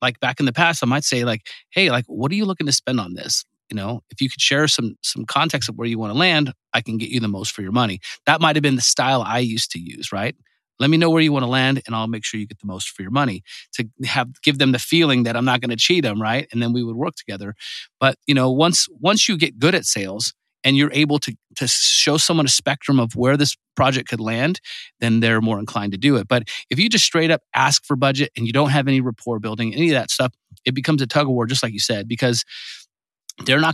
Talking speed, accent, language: 280 wpm, American, English